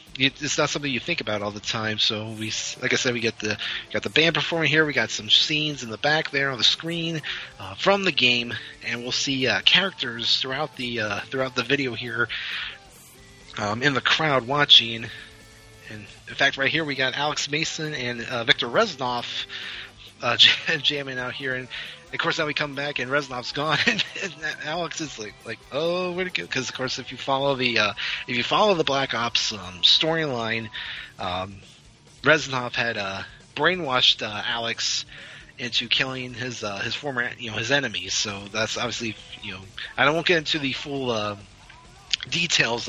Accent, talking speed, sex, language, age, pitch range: American, 195 wpm, male, English, 30-49, 115-150 Hz